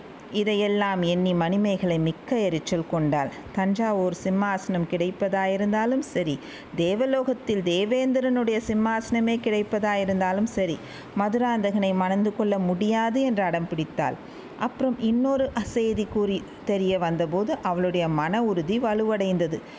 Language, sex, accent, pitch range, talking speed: Tamil, female, native, 185-235 Hz, 90 wpm